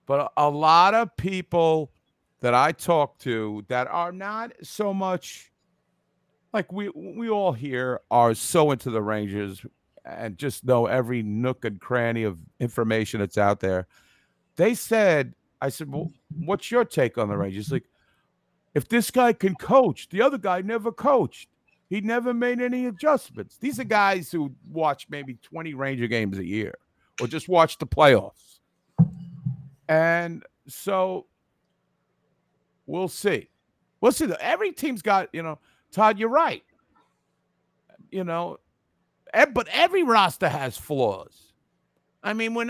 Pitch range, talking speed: 125-200 Hz, 150 wpm